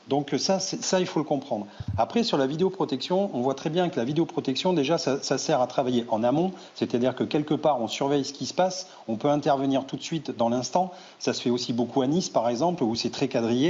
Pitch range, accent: 130-165 Hz, French